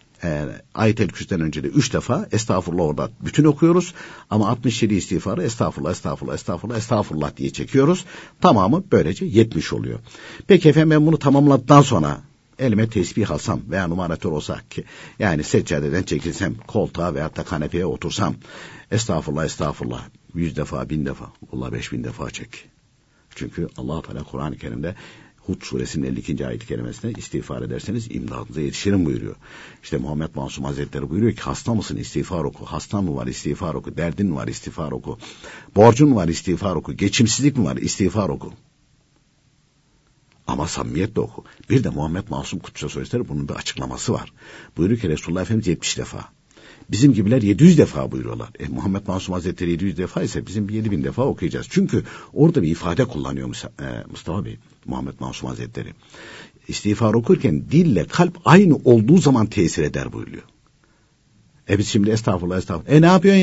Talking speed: 155 wpm